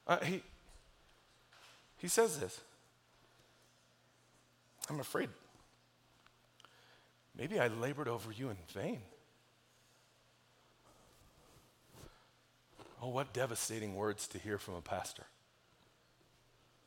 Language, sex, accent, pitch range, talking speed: English, male, American, 110-140 Hz, 80 wpm